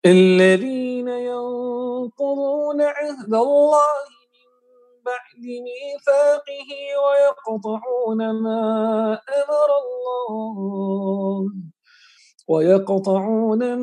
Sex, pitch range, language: male, 220-285 Hz, Indonesian